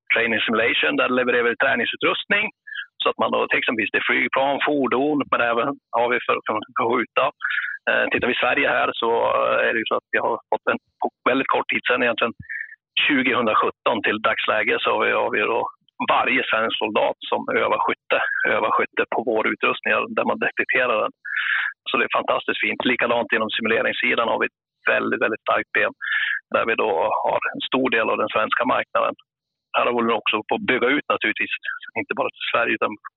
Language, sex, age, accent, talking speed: Swedish, male, 30-49, native, 195 wpm